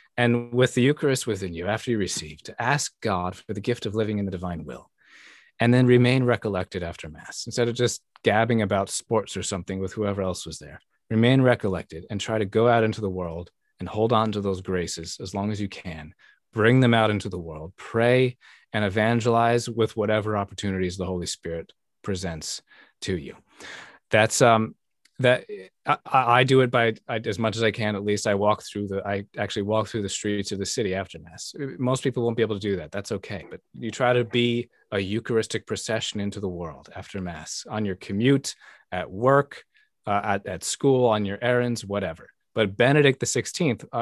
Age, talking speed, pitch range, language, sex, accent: 30-49, 205 wpm, 95-120 Hz, English, male, American